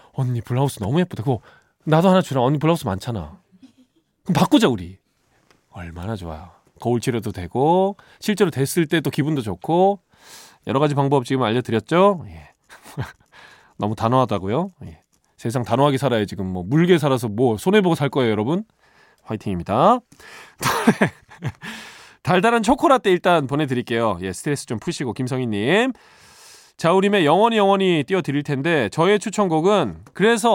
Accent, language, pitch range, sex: native, Korean, 120-200 Hz, male